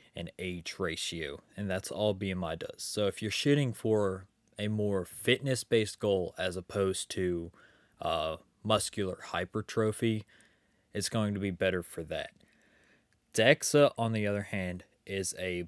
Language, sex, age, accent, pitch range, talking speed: English, male, 20-39, American, 95-110 Hz, 145 wpm